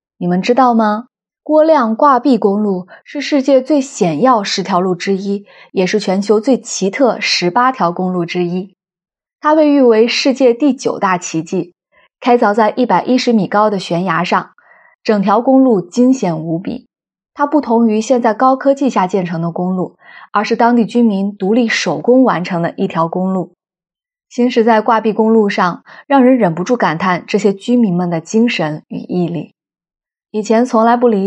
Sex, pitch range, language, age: female, 185-245 Hz, Chinese, 20-39